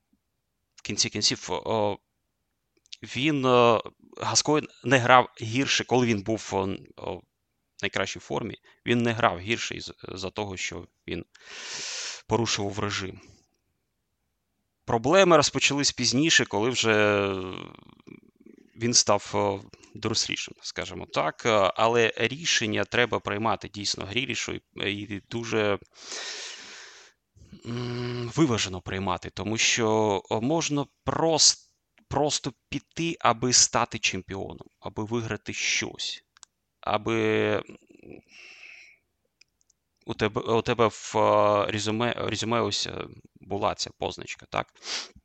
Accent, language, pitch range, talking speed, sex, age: native, Ukrainian, 100-120 Hz, 85 wpm, male, 30-49